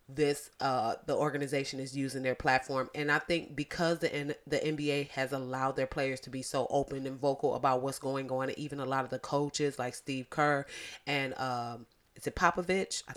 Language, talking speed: English, 205 wpm